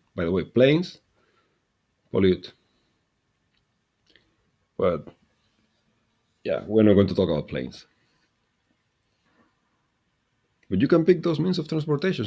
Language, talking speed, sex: English, 110 wpm, male